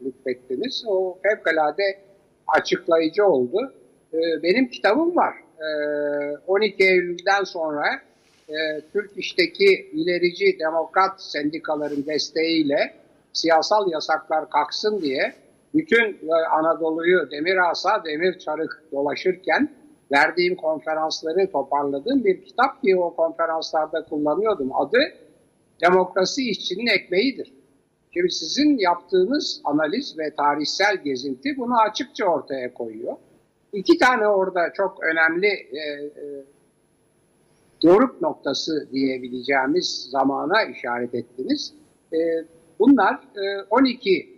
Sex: male